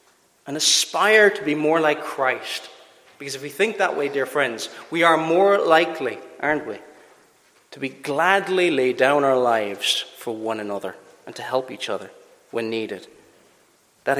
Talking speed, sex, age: 165 wpm, male, 30-49